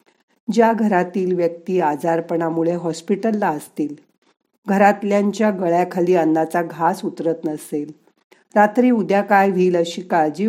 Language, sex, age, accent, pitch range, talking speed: Marathi, female, 50-69, native, 160-205 Hz, 105 wpm